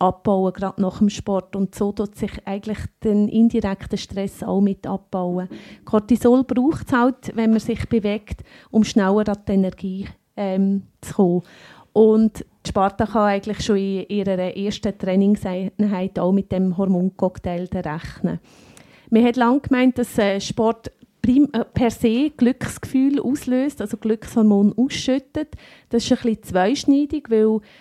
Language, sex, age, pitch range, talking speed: German, female, 30-49, 195-235 Hz, 140 wpm